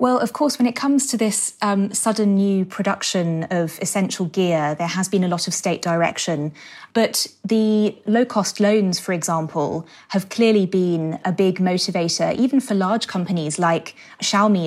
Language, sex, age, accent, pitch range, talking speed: English, female, 20-39, British, 175-210 Hz, 170 wpm